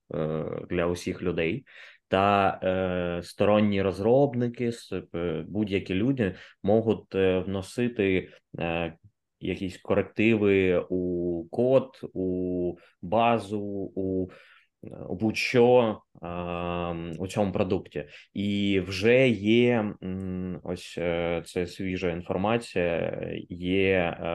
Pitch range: 90-105 Hz